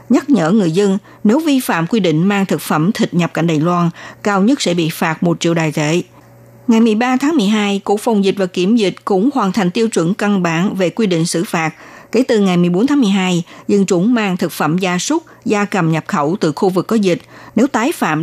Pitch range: 170-225 Hz